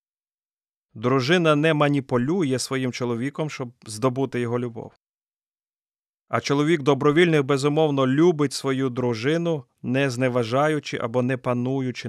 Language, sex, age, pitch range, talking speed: Ukrainian, male, 30-49, 120-145 Hz, 105 wpm